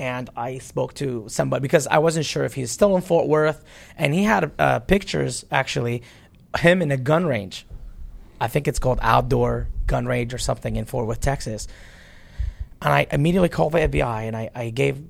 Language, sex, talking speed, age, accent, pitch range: English, male, 195 wpm, 30-49, American, 115-145 Hz